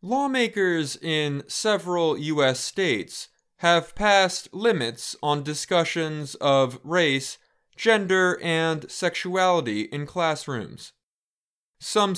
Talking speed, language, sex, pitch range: 90 wpm, English, male, 150-185 Hz